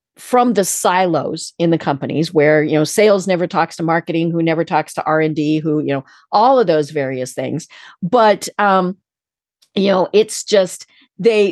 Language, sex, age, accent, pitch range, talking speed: English, female, 50-69, American, 175-255 Hz, 175 wpm